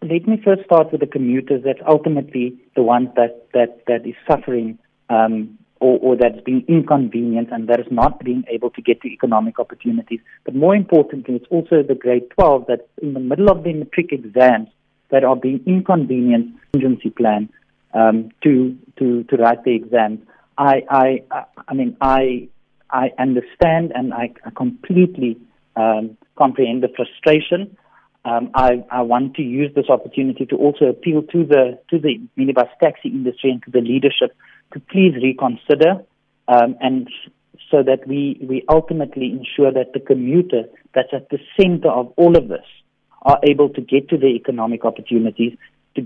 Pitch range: 120-155 Hz